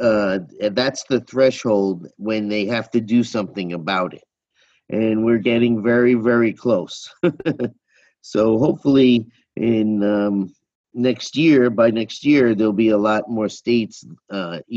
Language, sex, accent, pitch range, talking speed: English, male, American, 105-130 Hz, 140 wpm